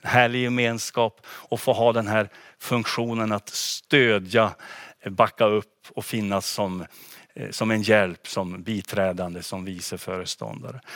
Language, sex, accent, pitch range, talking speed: Swedish, male, native, 105-130 Hz, 125 wpm